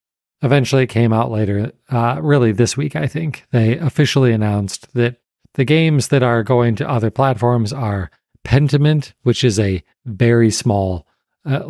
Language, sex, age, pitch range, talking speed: English, male, 40-59, 105-130 Hz, 160 wpm